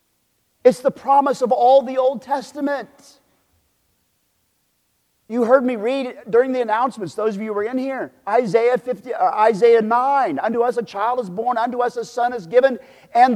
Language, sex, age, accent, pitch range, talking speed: English, male, 40-59, American, 210-265 Hz, 170 wpm